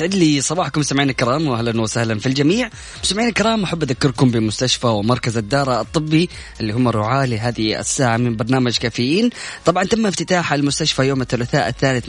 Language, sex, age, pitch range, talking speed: Arabic, female, 20-39, 125-155 Hz, 155 wpm